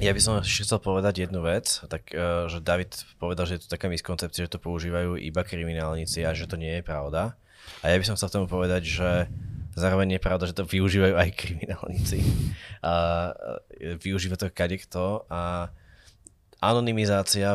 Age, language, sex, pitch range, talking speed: 20-39, Slovak, male, 85-95 Hz, 170 wpm